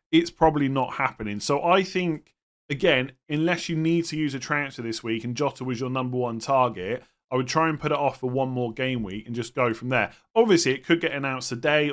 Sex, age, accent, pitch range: male, 30-49, British, 120-155 Hz